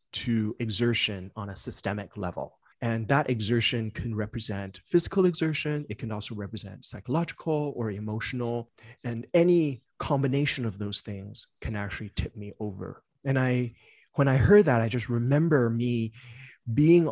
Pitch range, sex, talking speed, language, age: 105-130 Hz, male, 145 wpm, English, 30-49